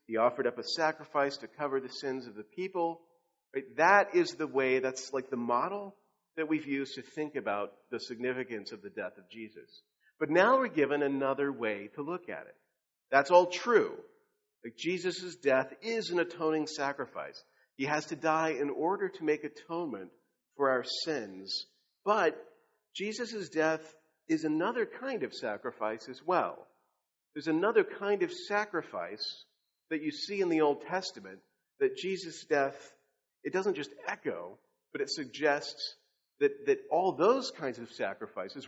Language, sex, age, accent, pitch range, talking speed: English, male, 40-59, American, 135-195 Hz, 165 wpm